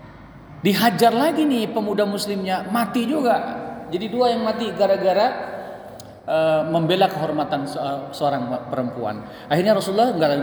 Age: 20-39